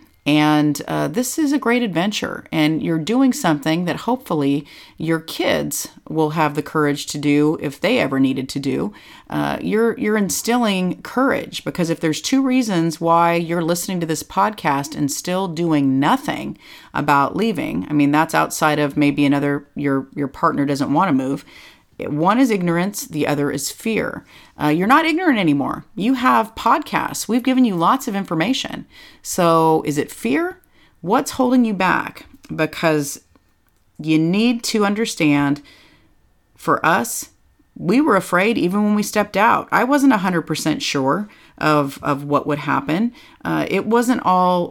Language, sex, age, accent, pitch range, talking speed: English, female, 40-59, American, 150-225 Hz, 160 wpm